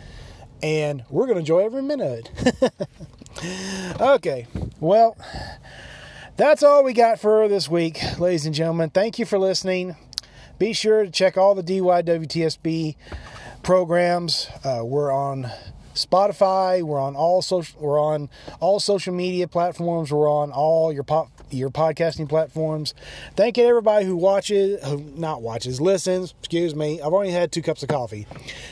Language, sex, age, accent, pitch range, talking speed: English, male, 30-49, American, 145-190 Hz, 150 wpm